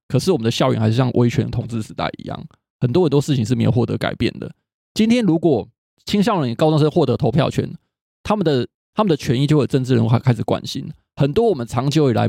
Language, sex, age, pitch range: Chinese, male, 20-39, 115-150 Hz